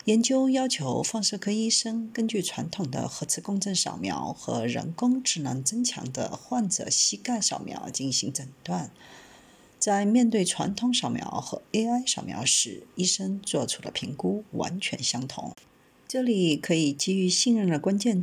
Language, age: Chinese, 50-69